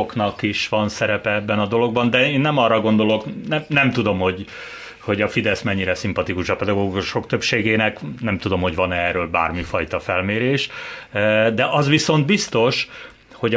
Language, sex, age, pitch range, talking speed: Hungarian, male, 30-49, 105-130 Hz, 150 wpm